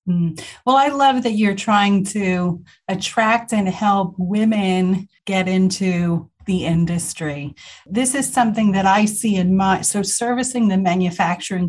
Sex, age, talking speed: female, 40-59, 140 wpm